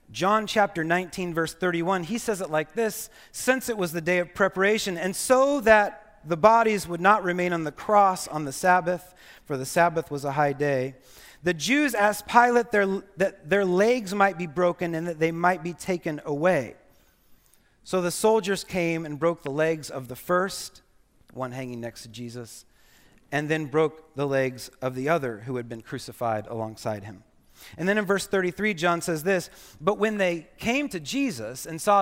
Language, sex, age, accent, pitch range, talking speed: English, male, 30-49, American, 135-190 Hz, 190 wpm